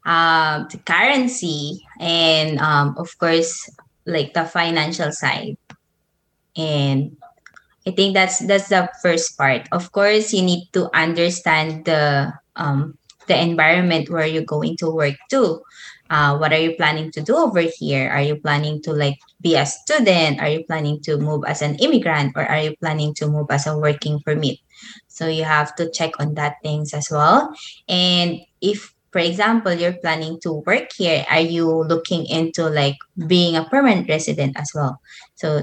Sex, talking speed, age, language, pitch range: female, 170 wpm, 20-39, English, 150-185 Hz